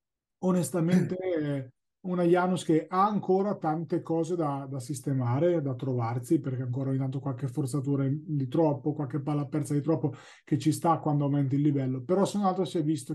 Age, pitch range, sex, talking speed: 30-49, 140-165 Hz, male, 185 wpm